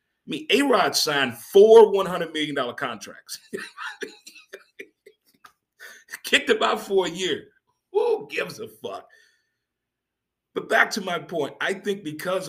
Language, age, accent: English, 30-49, American